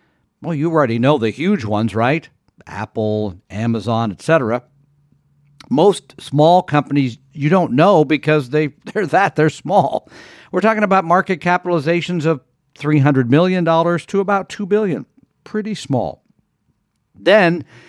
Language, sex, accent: English, male, American